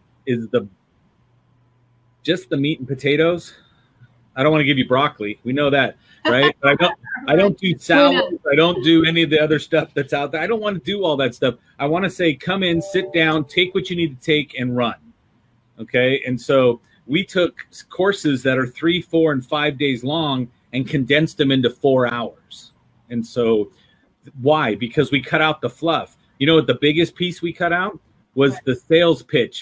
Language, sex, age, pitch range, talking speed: English, male, 30-49, 125-160 Hz, 200 wpm